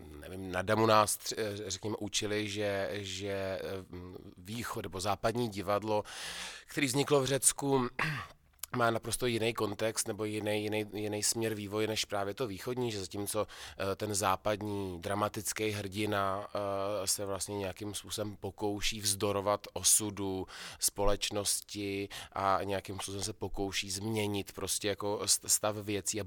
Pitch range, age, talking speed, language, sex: 95-110 Hz, 20-39, 125 wpm, Czech, male